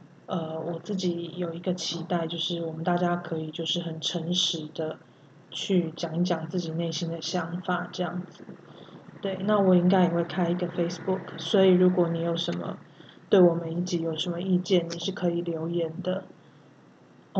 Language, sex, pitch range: Chinese, female, 160-180 Hz